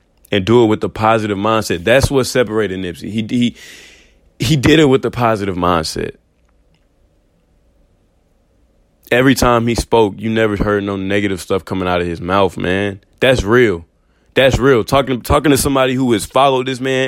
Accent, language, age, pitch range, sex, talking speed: American, English, 20-39, 90-125 Hz, male, 170 wpm